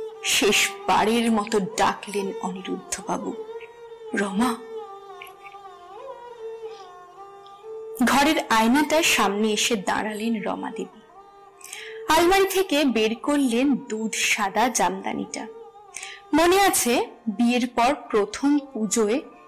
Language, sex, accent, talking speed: Bengali, female, native, 50 wpm